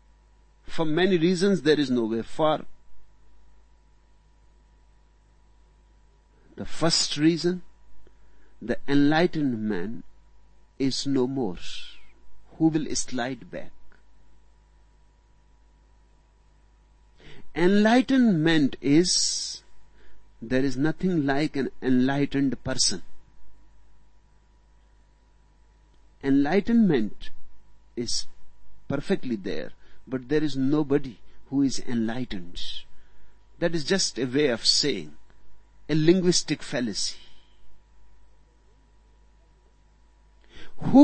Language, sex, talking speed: Hindi, male, 75 wpm